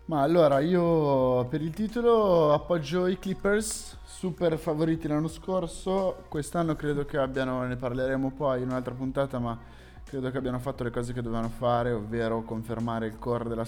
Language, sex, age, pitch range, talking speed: Italian, male, 20-39, 110-140 Hz, 165 wpm